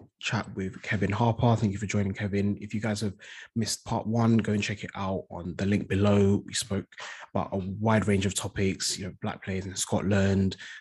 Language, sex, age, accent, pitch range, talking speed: English, male, 20-39, British, 95-105 Hz, 215 wpm